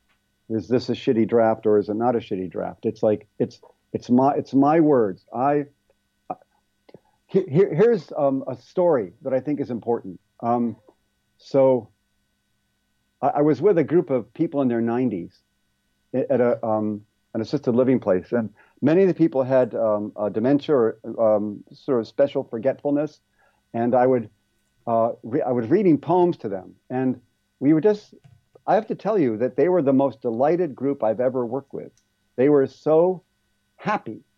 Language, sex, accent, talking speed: English, male, American, 180 wpm